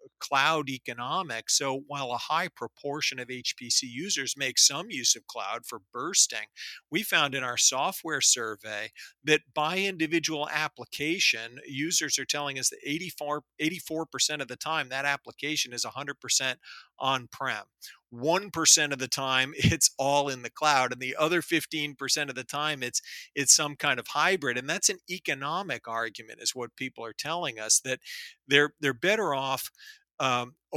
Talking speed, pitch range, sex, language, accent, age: 160 wpm, 130-155 Hz, male, English, American, 40-59